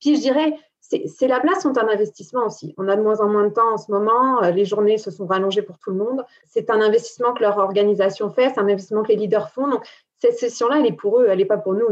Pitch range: 195-235 Hz